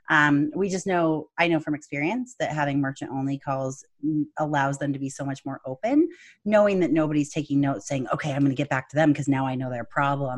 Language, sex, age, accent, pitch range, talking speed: English, female, 30-49, American, 140-180 Hz, 235 wpm